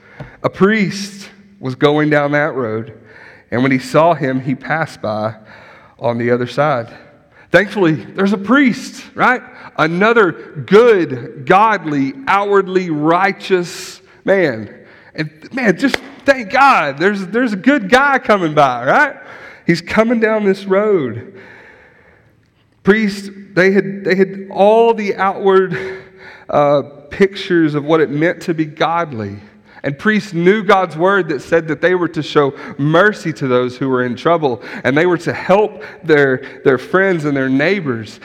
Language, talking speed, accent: English, 145 wpm, American